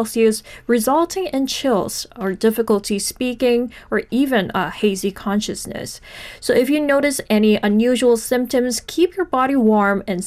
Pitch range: 205-245 Hz